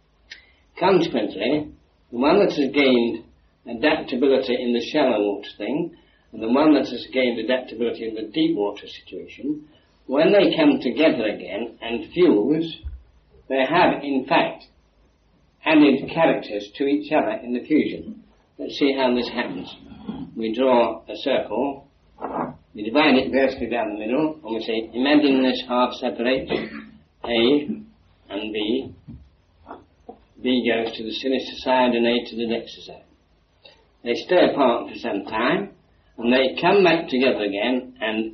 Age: 60-79